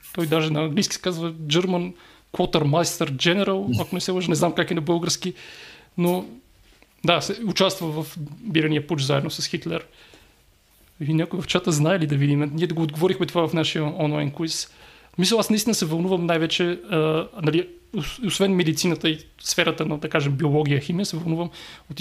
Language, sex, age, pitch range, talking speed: Bulgarian, male, 30-49, 155-180 Hz, 185 wpm